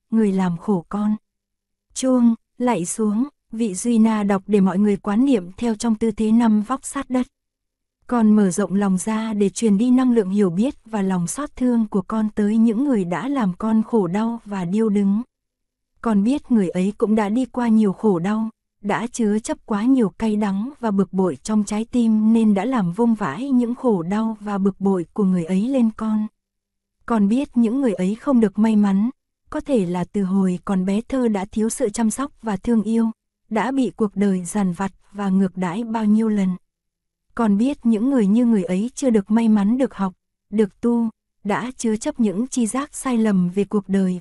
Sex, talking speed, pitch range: female, 210 wpm, 200-235 Hz